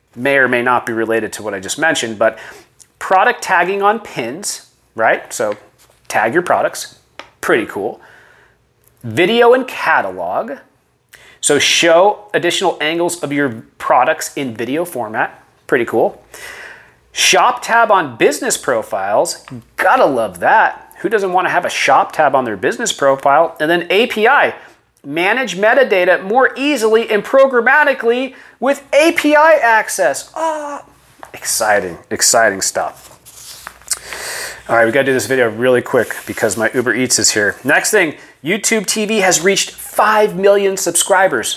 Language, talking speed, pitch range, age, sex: English, 145 wpm, 140-215 Hz, 30-49, male